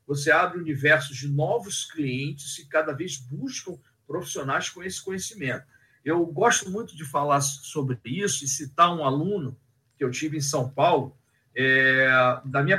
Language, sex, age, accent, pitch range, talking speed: Portuguese, male, 50-69, Brazilian, 135-185 Hz, 170 wpm